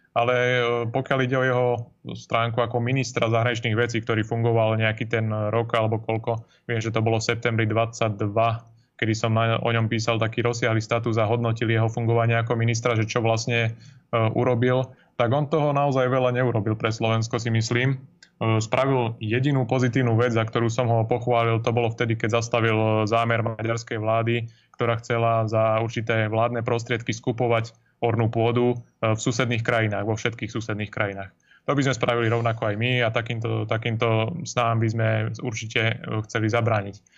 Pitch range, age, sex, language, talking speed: 110-120 Hz, 20-39, male, Slovak, 165 wpm